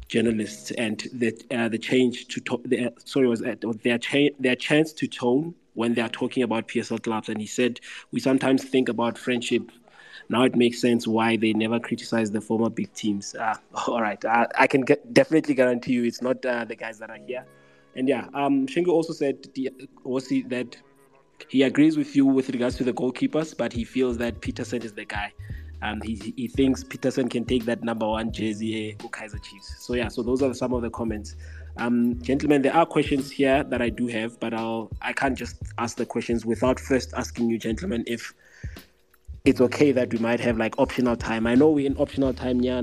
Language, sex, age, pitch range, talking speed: English, male, 20-39, 110-130 Hz, 215 wpm